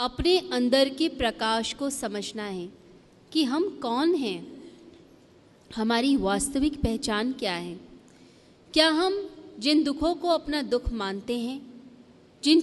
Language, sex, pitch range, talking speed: Hindi, female, 210-285 Hz, 125 wpm